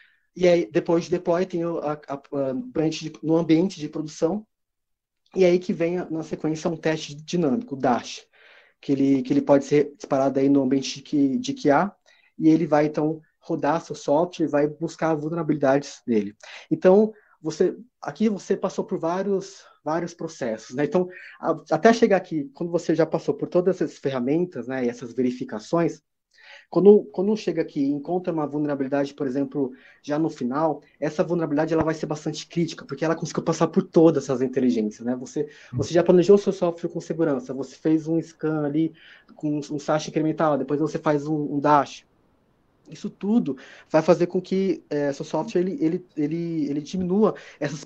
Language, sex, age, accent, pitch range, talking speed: Portuguese, male, 20-39, Brazilian, 145-175 Hz, 185 wpm